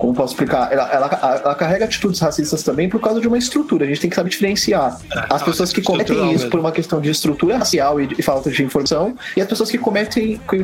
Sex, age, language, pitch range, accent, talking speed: male, 30-49, Portuguese, 155-220 Hz, Brazilian, 245 wpm